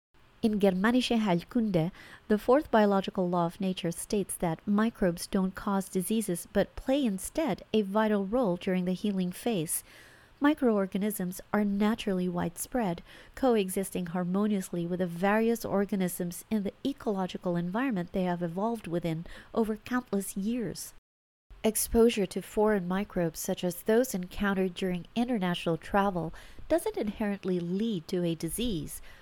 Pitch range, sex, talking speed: 180-230 Hz, female, 130 wpm